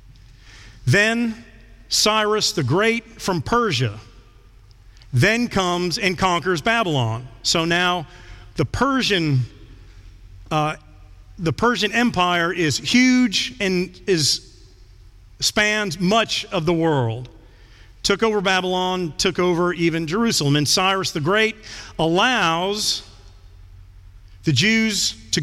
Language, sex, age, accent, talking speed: English, male, 40-59, American, 100 wpm